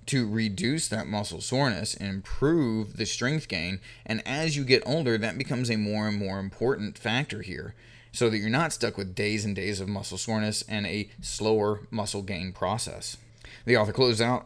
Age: 30-49